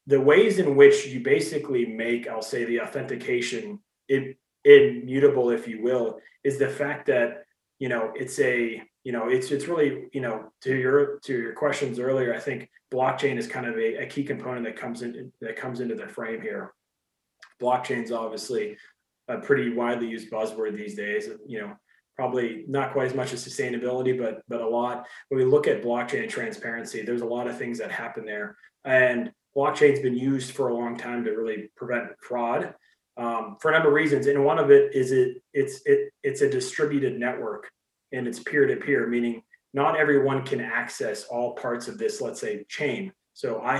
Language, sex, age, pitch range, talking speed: English, male, 30-49, 120-195 Hz, 190 wpm